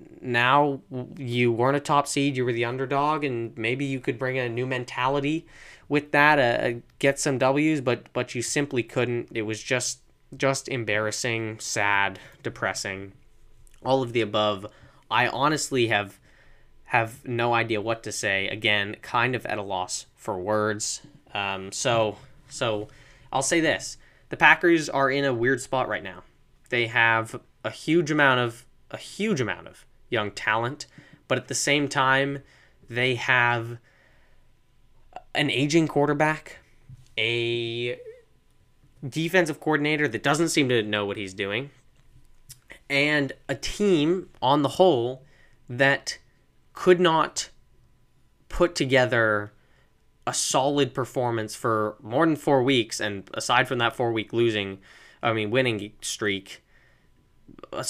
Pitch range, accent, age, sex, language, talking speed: 110-140 Hz, American, 10-29, male, English, 140 wpm